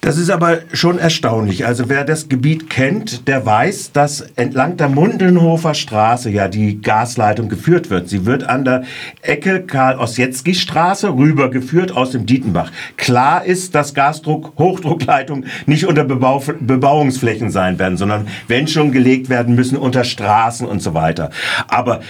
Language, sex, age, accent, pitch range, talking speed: German, male, 50-69, German, 115-145 Hz, 150 wpm